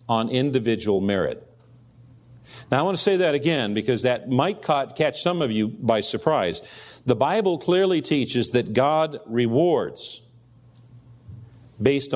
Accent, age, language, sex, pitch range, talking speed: American, 50-69, English, male, 115-145 Hz, 135 wpm